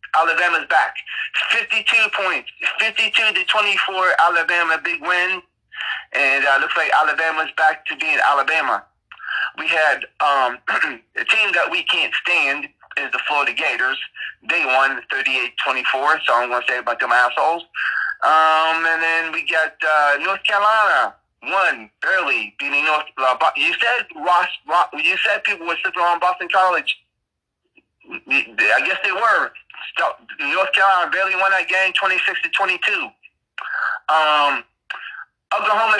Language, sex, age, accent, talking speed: English, male, 30-49, American, 145 wpm